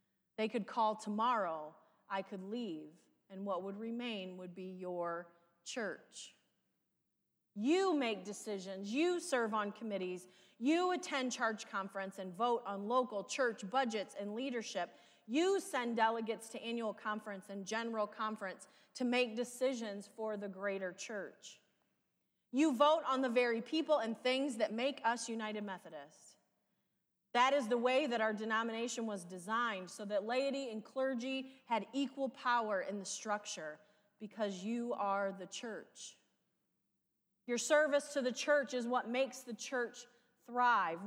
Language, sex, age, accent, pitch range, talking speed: English, female, 30-49, American, 200-250 Hz, 145 wpm